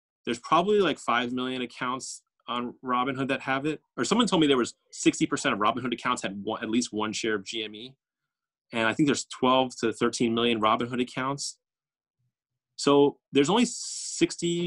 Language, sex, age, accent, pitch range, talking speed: English, male, 30-49, American, 115-150 Hz, 170 wpm